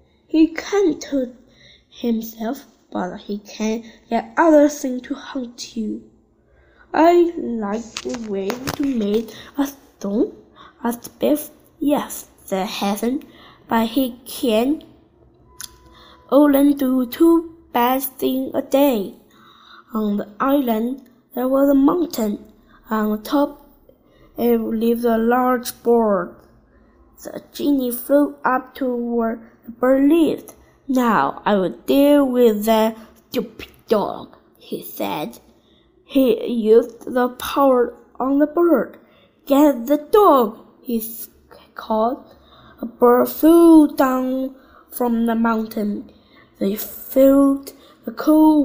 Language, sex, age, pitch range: Chinese, female, 10-29, 230-290 Hz